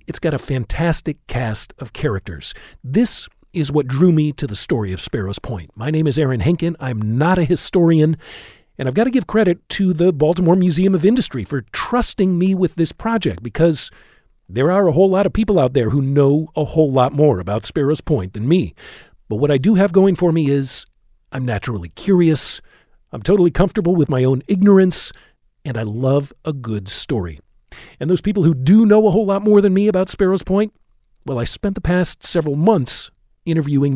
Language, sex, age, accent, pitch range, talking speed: English, male, 50-69, American, 130-180 Hz, 200 wpm